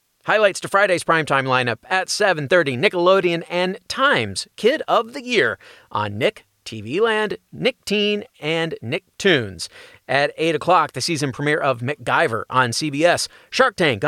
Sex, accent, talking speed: male, American, 150 wpm